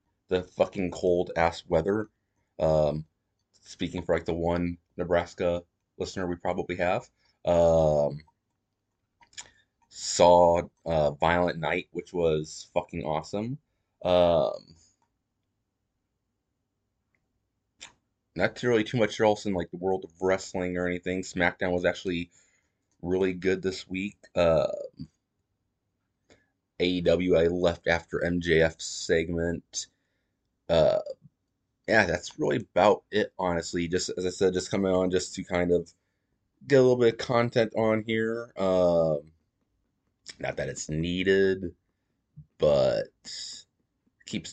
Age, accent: 30-49, American